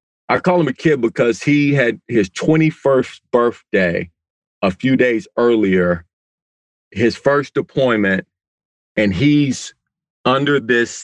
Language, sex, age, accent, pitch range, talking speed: English, male, 40-59, American, 120-155 Hz, 120 wpm